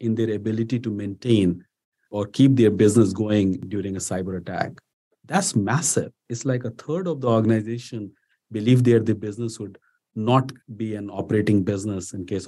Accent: Indian